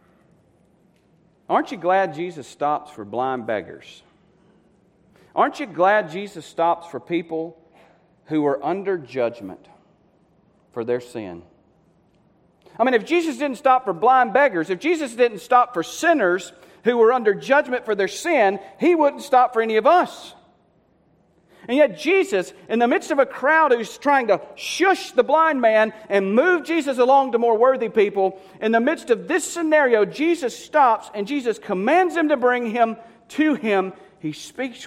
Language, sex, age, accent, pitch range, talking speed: English, male, 40-59, American, 155-255 Hz, 160 wpm